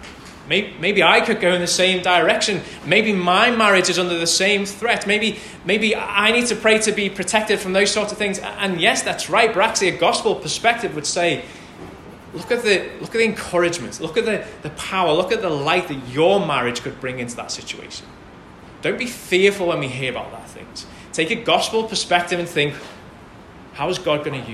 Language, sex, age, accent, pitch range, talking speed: English, male, 20-39, British, 150-200 Hz, 210 wpm